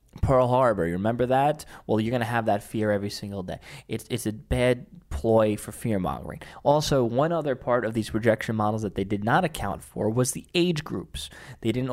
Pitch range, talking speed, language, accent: 105-135 Hz, 215 wpm, English, American